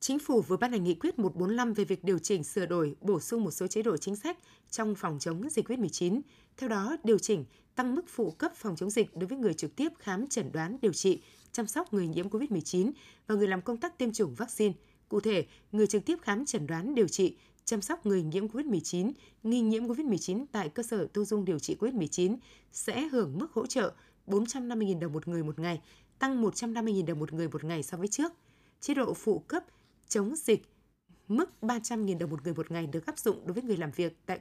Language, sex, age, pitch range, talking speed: Vietnamese, female, 20-39, 180-235 Hz, 225 wpm